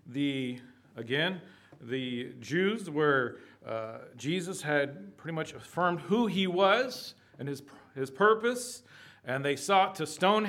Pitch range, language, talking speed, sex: 135-195 Hz, English, 130 wpm, male